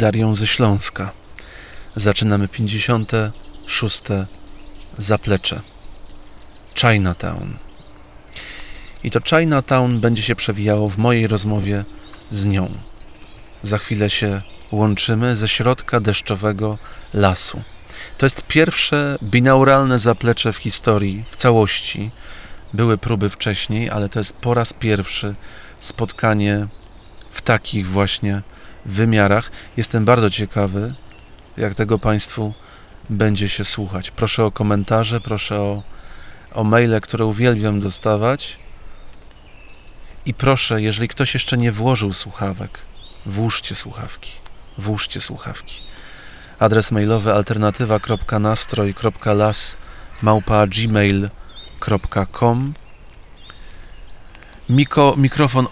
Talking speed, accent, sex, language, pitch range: 90 wpm, native, male, Polish, 100-115 Hz